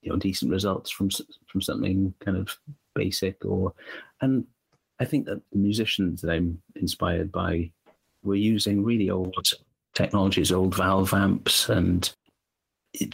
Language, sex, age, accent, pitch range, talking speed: English, male, 40-59, British, 95-115 Hz, 140 wpm